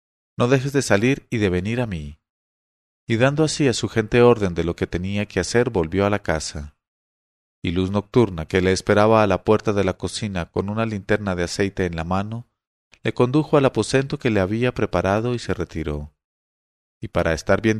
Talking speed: 205 wpm